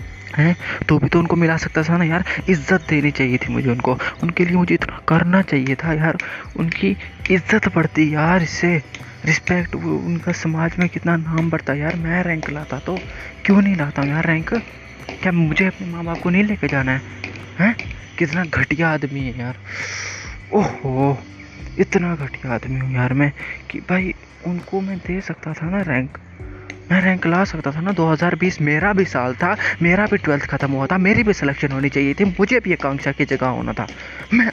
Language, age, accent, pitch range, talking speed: Hindi, 20-39, native, 130-170 Hz, 195 wpm